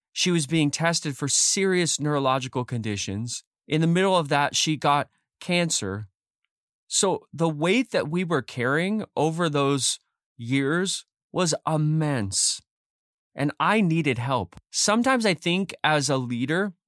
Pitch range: 125-170 Hz